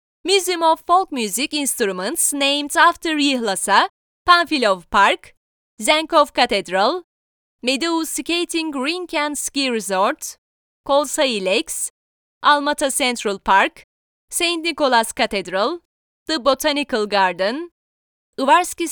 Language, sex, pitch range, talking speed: Turkish, female, 245-340 Hz, 95 wpm